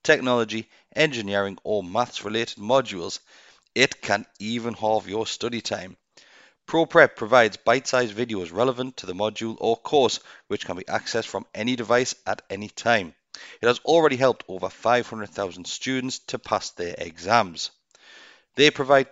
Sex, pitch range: male, 100-130 Hz